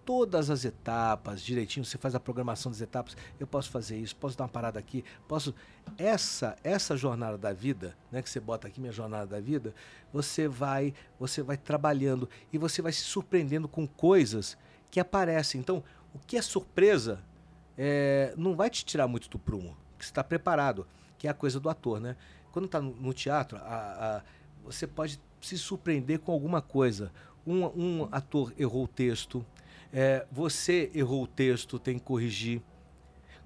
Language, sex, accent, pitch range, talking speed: Portuguese, male, Brazilian, 115-160 Hz, 180 wpm